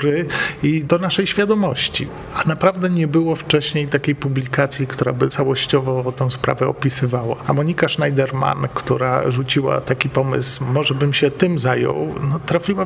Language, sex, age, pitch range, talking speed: Polish, male, 40-59, 130-155 Hz, 140 wpm